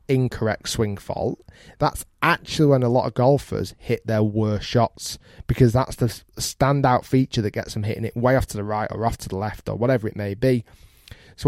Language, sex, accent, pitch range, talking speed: English, male, British, 105-130 Hz, 210 wpm